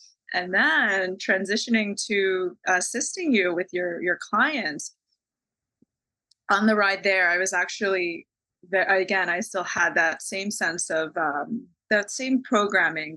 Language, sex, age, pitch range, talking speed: English, female, 20-39, 180-215 Hz, 130 wpm